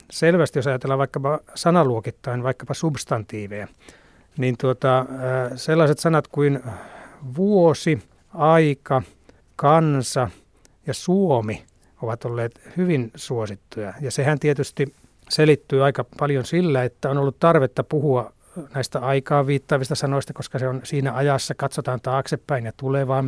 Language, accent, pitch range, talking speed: Finnish, native, 125-150 Hz, 120 wpm